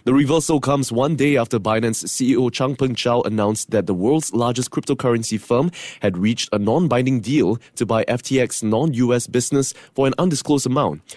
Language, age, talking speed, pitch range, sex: English, 20-39, 170 wpm, 110-140 Hz, male